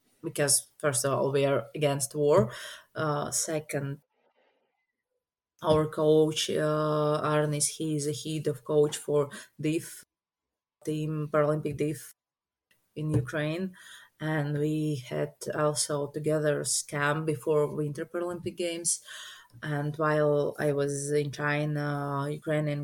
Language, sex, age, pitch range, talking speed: English, female, 20-39, 145-155 Hz, 115 wpm